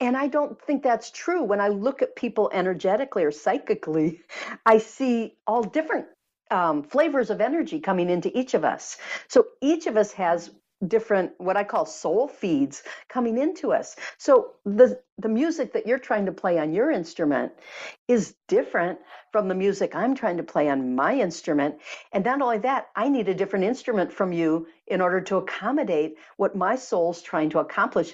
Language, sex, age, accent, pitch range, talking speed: English, female, 50-69, American, 170-245 Hz, 185 wpm